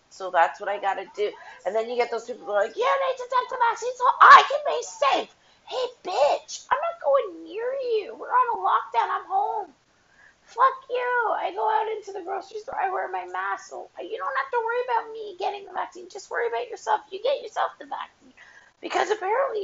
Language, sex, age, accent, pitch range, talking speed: English, female, 30-49, American, 265-410 Hz, 225 wpm